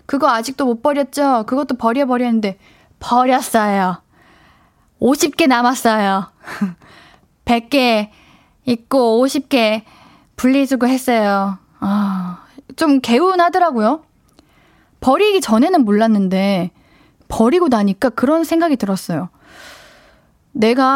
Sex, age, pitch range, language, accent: female, 20-39, 215-290 Hz, Korean, native